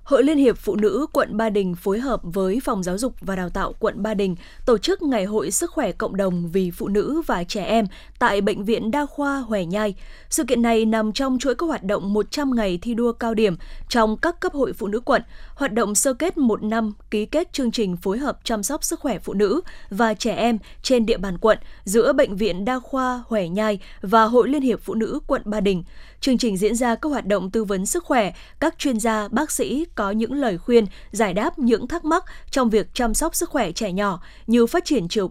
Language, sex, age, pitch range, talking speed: Vietnamese, female, 20-39, 210-260 Hz, 240 wpm